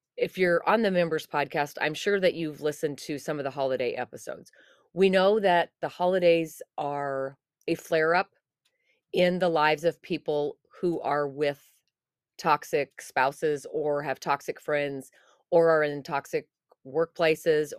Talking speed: 150 wpm